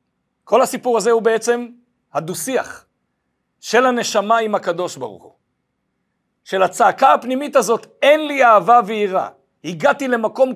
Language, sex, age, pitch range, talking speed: Hebrew, male, 60-79, 170-250 Hz, 125 wpm